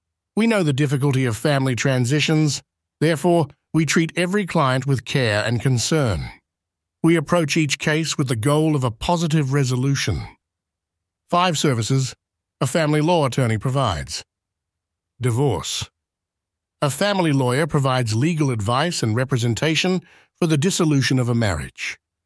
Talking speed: 130 wpm